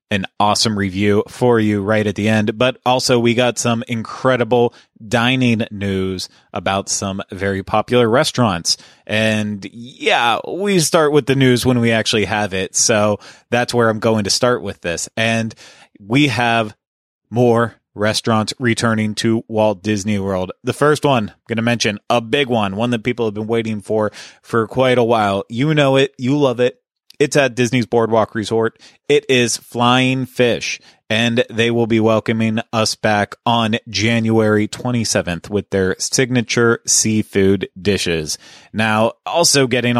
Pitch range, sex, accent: 105-120 Hz, male, American